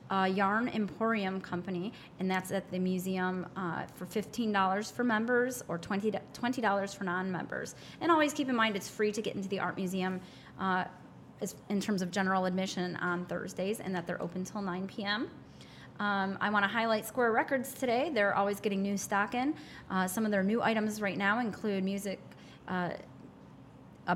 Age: 30-49